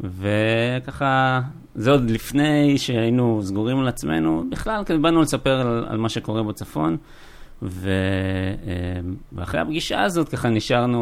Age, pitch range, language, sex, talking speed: 20-39, 100-125 Hz, Hebrew, male, 125 wpm